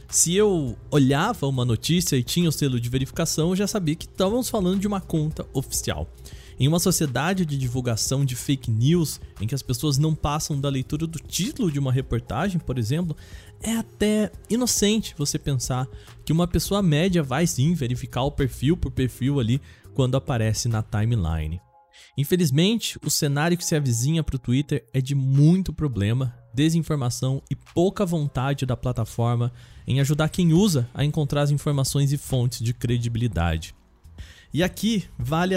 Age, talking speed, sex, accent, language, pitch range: 20-39, 165 wpm, male, Brazilian, Portuguese, 125-165 Hz